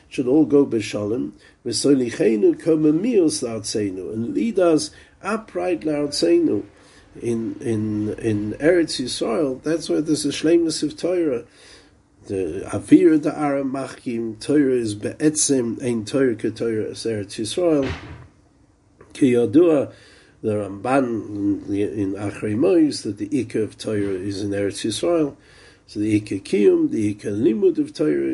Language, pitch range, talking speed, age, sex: English, 105-150 Hz, 130 wpm, 50-69, male